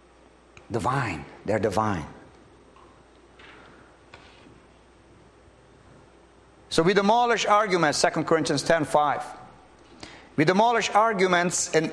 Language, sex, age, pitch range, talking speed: English, male, 50-69, 180-255 Hz, 75 wpm